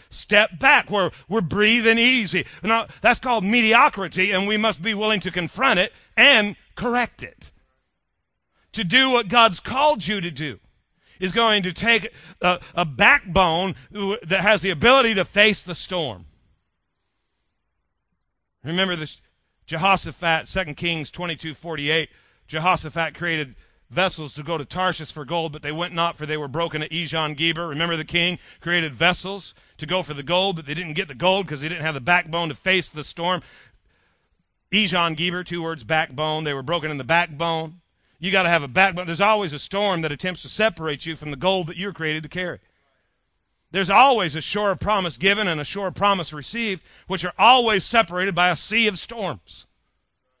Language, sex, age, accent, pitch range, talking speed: English, male, 40-59, American, 155-200 Hz, 185 wpm